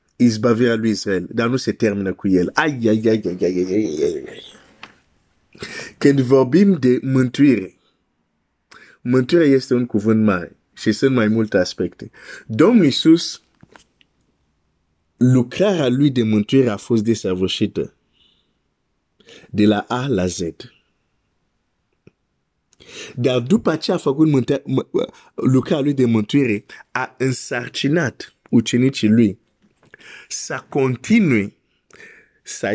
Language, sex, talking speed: Romanian, male, 130 wpm